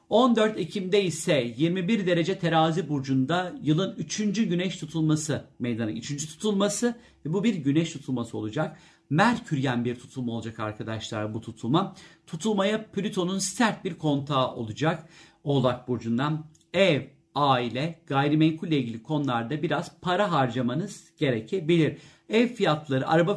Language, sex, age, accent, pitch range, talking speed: Turkish, male, 50-69, native, 140-185 Hz, 125 wpm